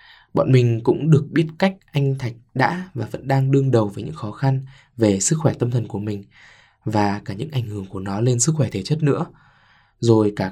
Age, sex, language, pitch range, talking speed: 20-39, male, Vietnamese, 110-135 Hz, 230 wpm